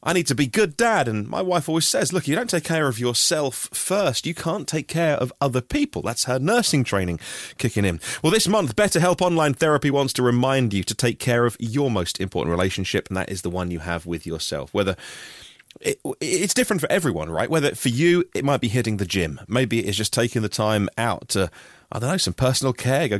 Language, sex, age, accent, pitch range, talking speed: English, male, 30-49, British, 110-155 Hz, 230 wpm